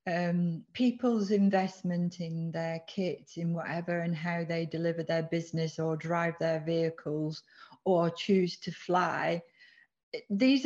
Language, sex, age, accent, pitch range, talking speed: English, female, 40-59, British, 175-210 Hz, 130 wpm